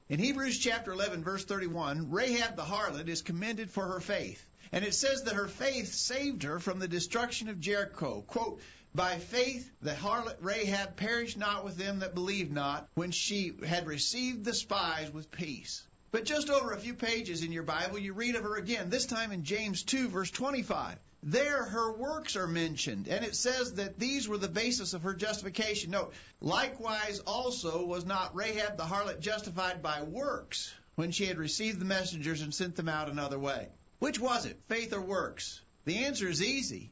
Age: 50-69